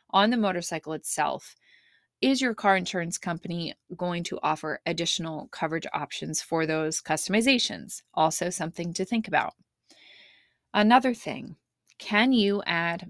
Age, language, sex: 20-39, English, female